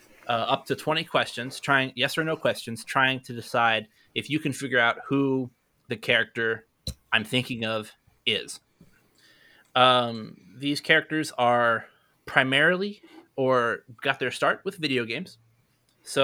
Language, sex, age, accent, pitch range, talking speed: English, male, 20-39, American, 120-145 Hz, 140 wpm